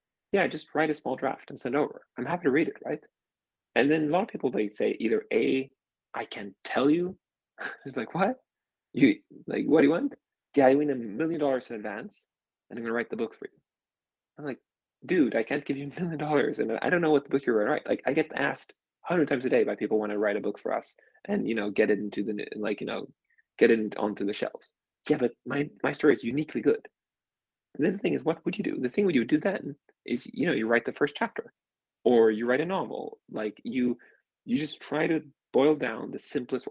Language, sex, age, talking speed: English, male, 20-39, 245 wpm